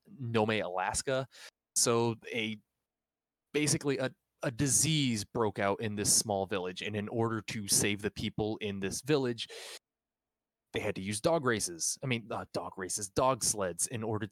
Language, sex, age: English, male, 20-39